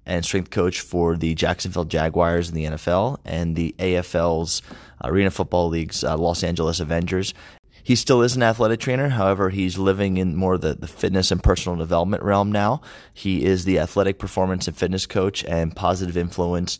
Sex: male